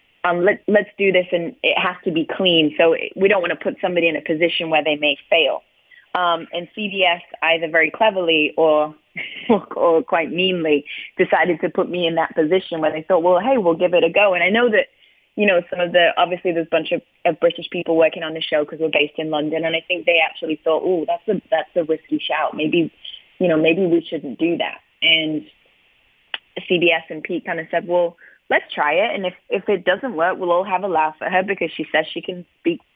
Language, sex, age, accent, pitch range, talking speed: English, female, 20-39, American, 165-200 Hz, 235 wpm